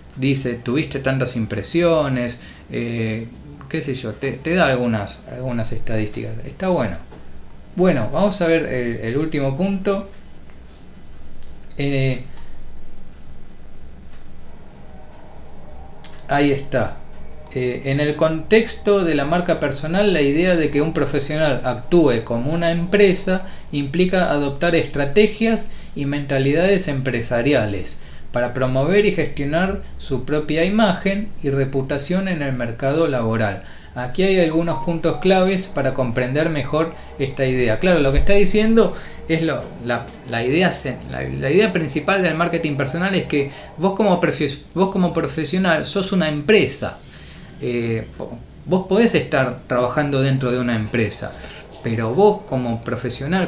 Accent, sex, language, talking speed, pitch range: Argentinian, male, Spanish, 120 wpm, 120-170 Hz